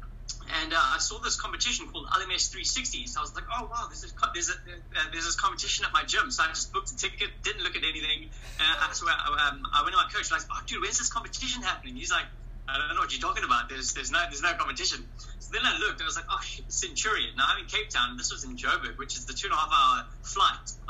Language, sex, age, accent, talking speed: English, male, 20-39, British, 285 wpm